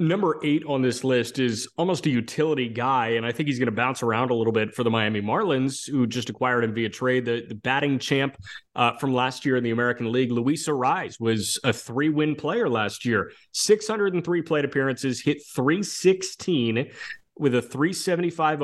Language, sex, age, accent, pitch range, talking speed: English, male, 30-49, American, 115-145 Hz, 195 wpm